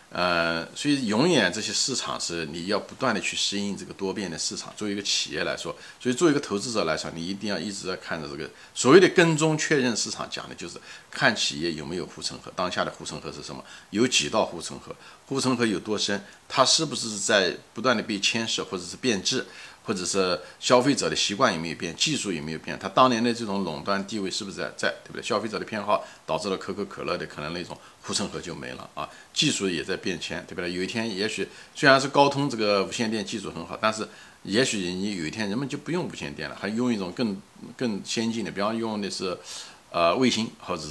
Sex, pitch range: male, 90-115 Hz